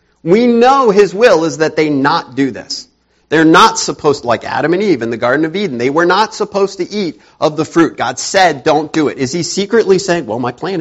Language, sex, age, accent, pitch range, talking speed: English, male, 40-59, American, 115-190 Hz, 240 wpm